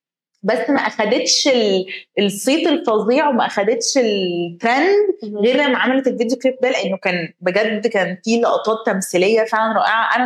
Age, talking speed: 20-39, 140 wpm